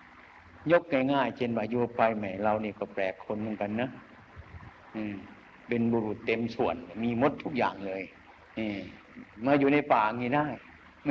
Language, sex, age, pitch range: Thai, male, 60-79, 105-140 Hz